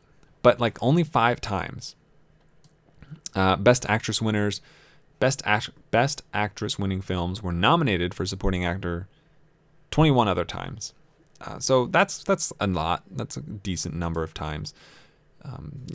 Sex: male